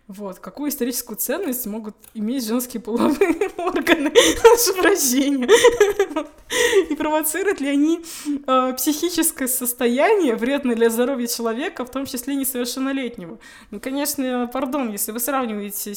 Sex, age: female, 20-39